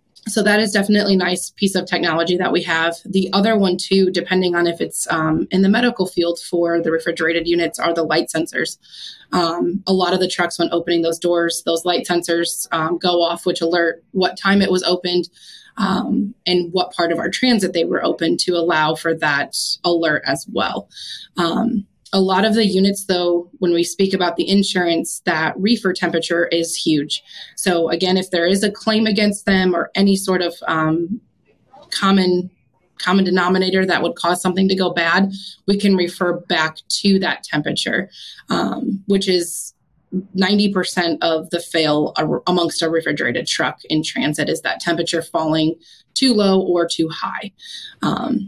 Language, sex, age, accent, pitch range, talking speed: English, female, 20-39, American, 170-195 Hz, 180 wpm